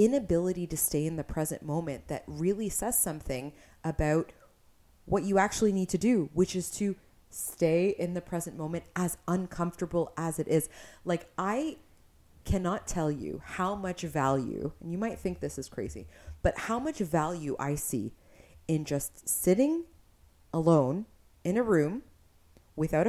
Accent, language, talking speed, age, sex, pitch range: American, English, 155 wpm, 30-49, female, 155-210 Hz